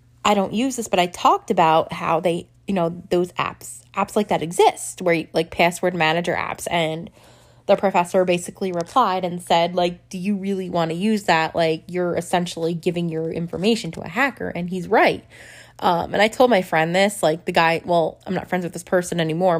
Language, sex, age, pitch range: English, female, 20-39, 165-190 Hz